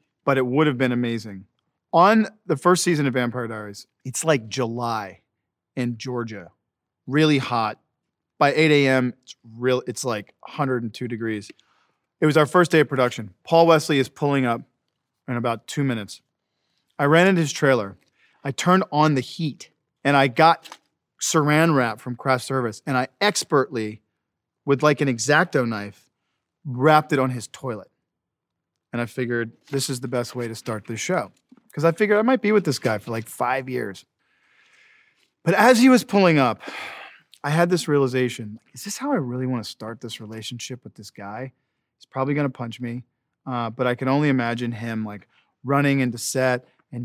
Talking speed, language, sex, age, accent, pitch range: 180 wpm, English, male, 40-59, American, 115-150 Hz